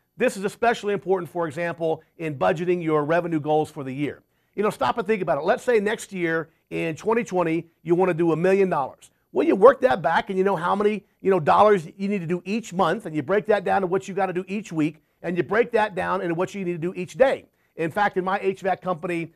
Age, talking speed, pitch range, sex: 50-69, 255 wpm, 170-220 Hz, male